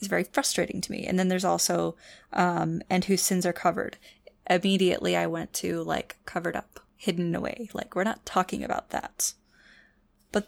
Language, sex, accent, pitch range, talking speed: English, female, American, 175-195 Hz, 180 wpm